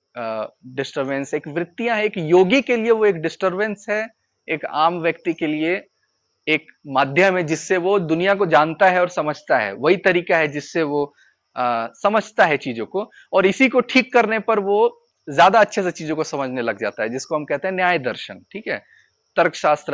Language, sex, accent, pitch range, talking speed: Hindi, male, native, 150-215 Hz, 195 wpm